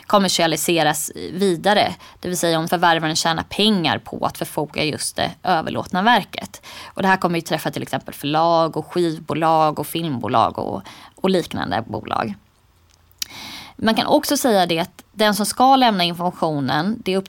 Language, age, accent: Swedish, 20-39, native